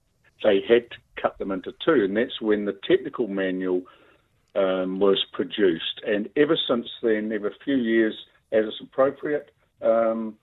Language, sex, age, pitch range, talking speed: English, male, 50-69, 100-125 Hz, 155 wpm